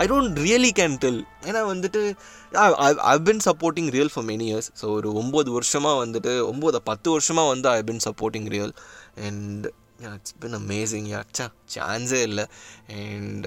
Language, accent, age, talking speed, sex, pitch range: Tamil, native, 20-39, 165 wpm, male, 110-160 Hz